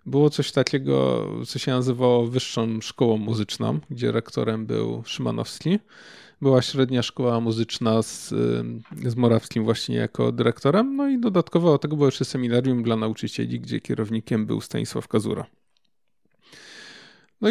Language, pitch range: Polish, 115-135 Hz